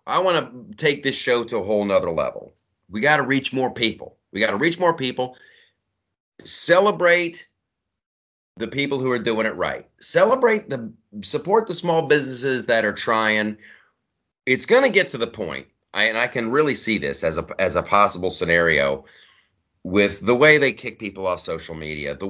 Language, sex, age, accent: English, male, 30-49, American